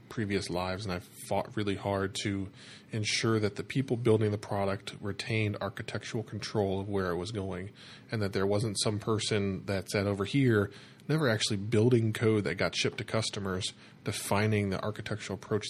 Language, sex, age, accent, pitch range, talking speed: English, male, 20-39, American, 100-115 Hz, 175 wpm